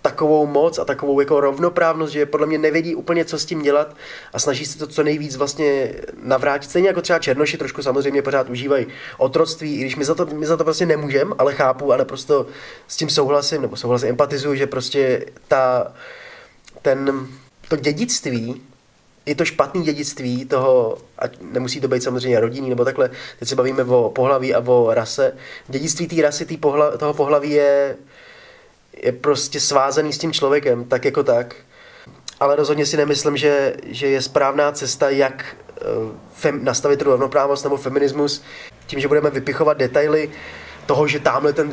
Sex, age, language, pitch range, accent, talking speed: male, 20-39, Czech, 140-160 Hz, native, 175 wpm